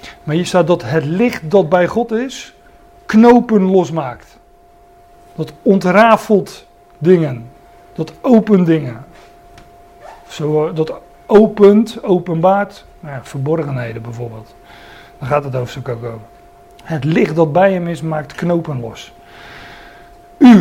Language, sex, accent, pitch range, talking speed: Dutch, male, Dutch, 155-195 Hz, 115 wpm